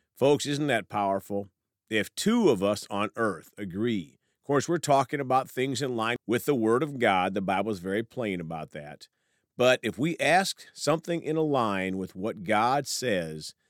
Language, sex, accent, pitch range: English, male, American, 95-140 Hz